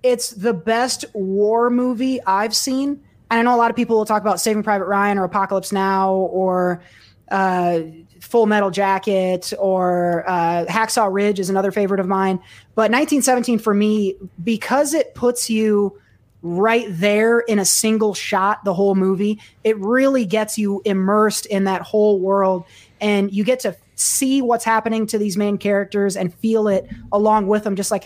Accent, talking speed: American, 175 wpm